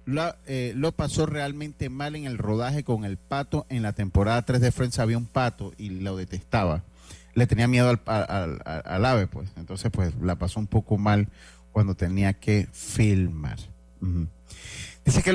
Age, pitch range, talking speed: 40-59, 95-140 Hz, 185 wpm